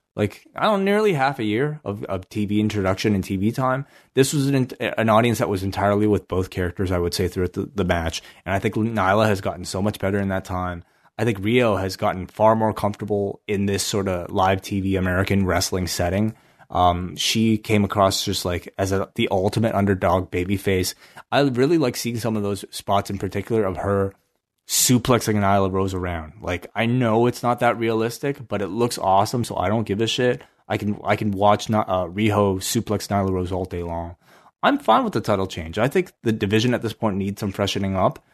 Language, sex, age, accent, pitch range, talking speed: English, male, 20-39, American, 95-115 Hz, 215 wpm